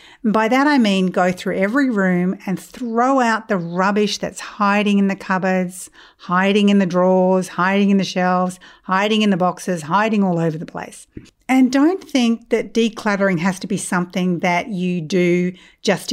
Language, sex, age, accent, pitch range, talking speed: English, female, 50-69, Australian, 180-245 Hz, 180 wpm